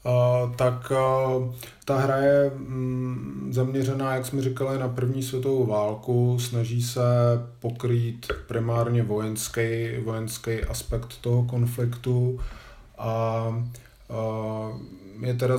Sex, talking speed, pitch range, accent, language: male, 90 wpm, 105-120 Hz, native, Czech